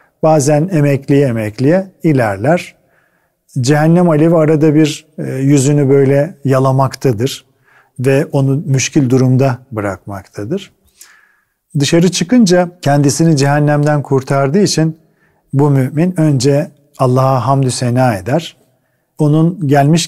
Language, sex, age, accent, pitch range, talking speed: Turkish, male, 40-59, native, 130-165 Hz, 95 wpm